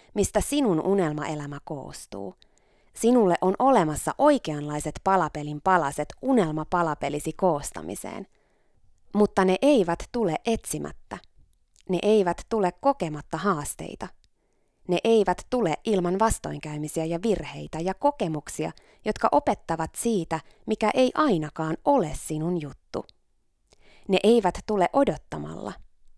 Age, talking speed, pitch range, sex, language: 20-39, 100 wpm, 155-230 Hz, female, Finnish